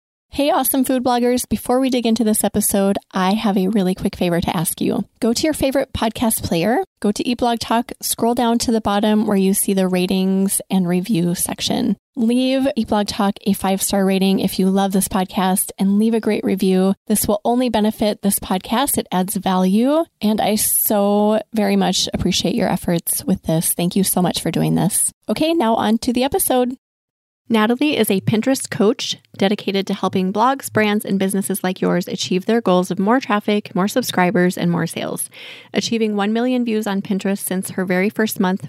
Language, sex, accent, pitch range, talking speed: English, female, American, 190-230 Hz, 200 wpm